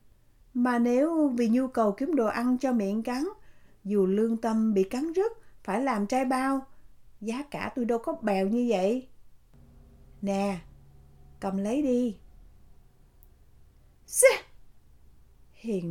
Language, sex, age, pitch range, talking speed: Vietnamese, female, 60-79, 190-245 Hz, 130 wpm